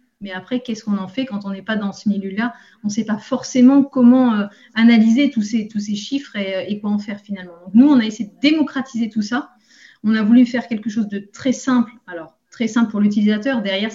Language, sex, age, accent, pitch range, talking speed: French, female, 30-49, French, 200-245 Hz, 230 wpm